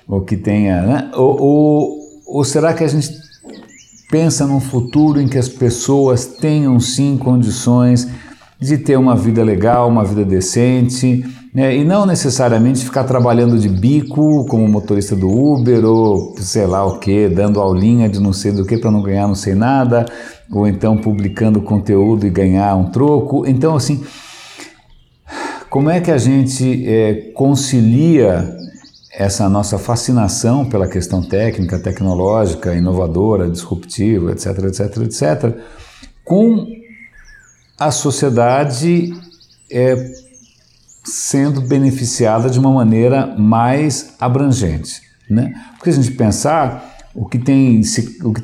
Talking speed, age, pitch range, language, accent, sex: 130 wpm, 60-79, 105-135 Hz, Portuguese, Brazilian, male